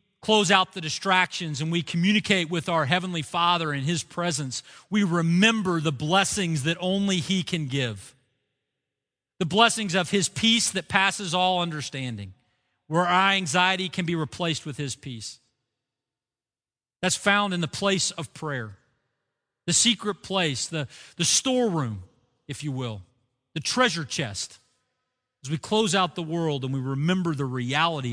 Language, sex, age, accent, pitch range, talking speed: English, male, 40-59, American, 140-205 Hz, 150 wpm